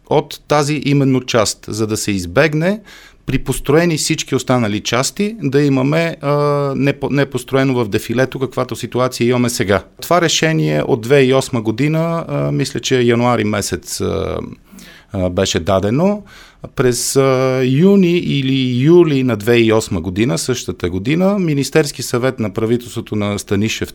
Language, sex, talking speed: Bulgarian, male, 135 wpm